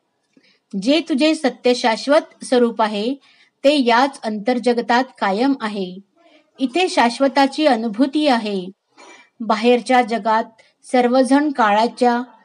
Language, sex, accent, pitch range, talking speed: Marathi, female, native, 220-285 Hz, 95 wpm